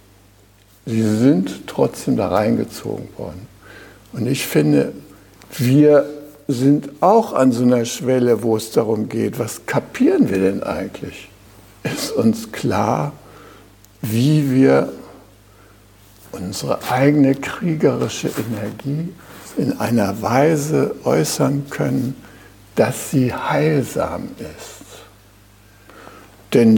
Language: German